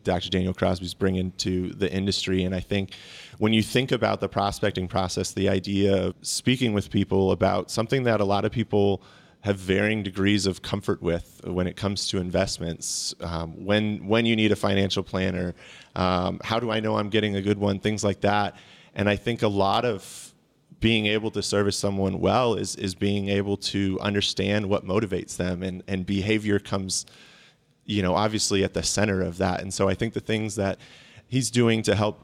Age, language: 30-49, English